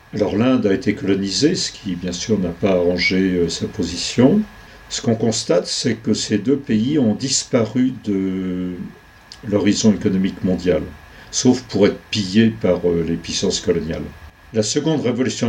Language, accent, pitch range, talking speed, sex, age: French, French, 100-125 Hz, 160 wpm, male, 50-69